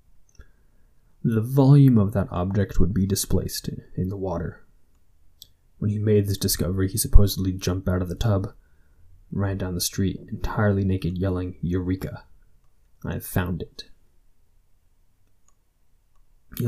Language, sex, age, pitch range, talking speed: English, male, 20-39, 90-110 Hz, 135 wpm